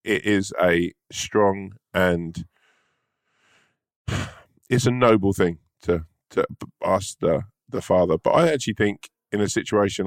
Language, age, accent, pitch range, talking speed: English, 20-39, British, 85-105 Hz, 130 wpm